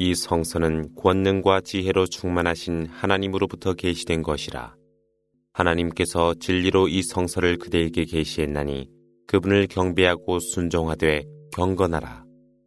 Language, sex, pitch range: Korean, male, 85-95 Hz